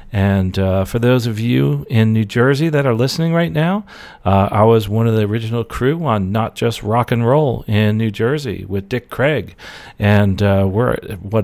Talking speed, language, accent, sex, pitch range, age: 200 wpm, English, American, male, 100-125 Hz, 40-59